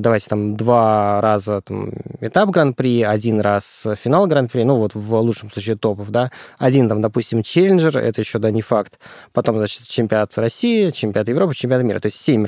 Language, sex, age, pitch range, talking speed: Russian, male, 20-39, 110-140 Hz, 180 wpm